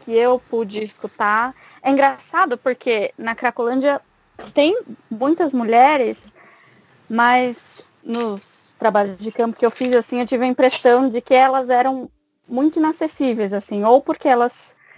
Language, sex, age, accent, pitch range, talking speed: Portuguese, female, 20-39, Brazilian, 225-260 Hz, 140 wpm